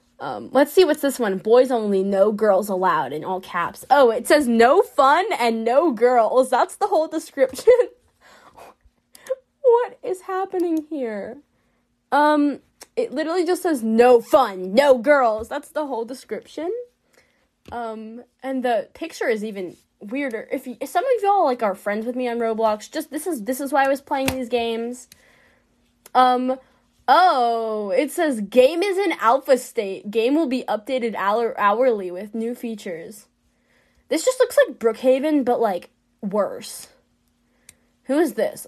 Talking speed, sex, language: 160 wpm, female, English